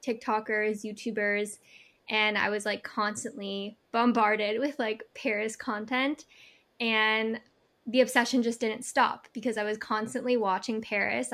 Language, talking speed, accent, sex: English, 125 wpm, American, female